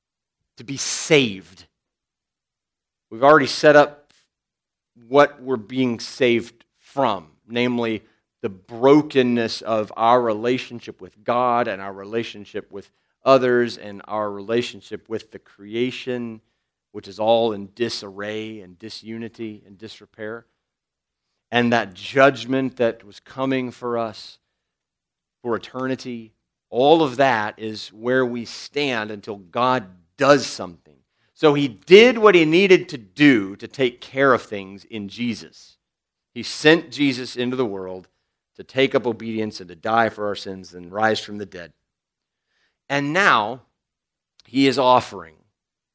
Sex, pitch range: male, 105-130 Hz